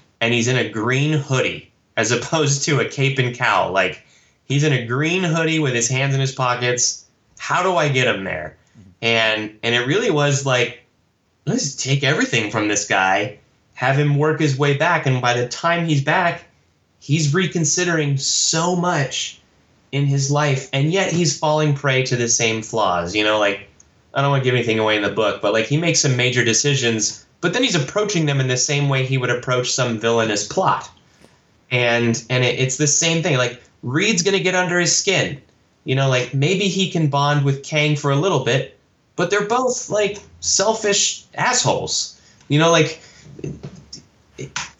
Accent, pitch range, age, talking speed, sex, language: American, 115-155 Hz, 20-39, 195 wpm, male, English